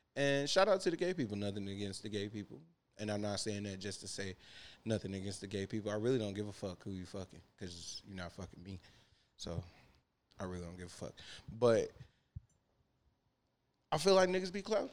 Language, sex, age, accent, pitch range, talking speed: English, male, 20-39, American, 100-140 Hz, 215 wpm